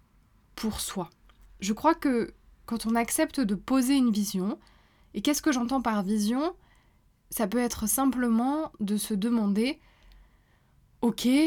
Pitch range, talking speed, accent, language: 200-255 Hz, 135 wpm, French, French